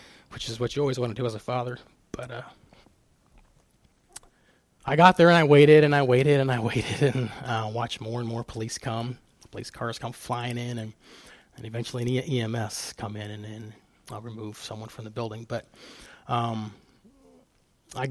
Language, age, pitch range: English, 20-39, 110-125 Hz